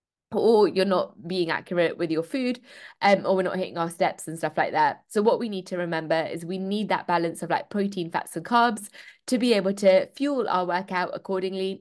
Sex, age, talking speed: female, 20-39, 225 wpm